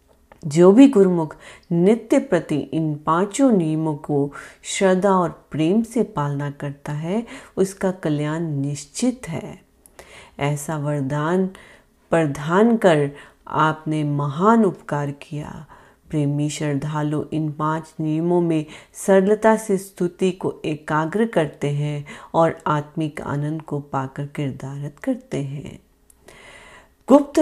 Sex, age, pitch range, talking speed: female, 30-49, 150-200 Hz, 110 wpm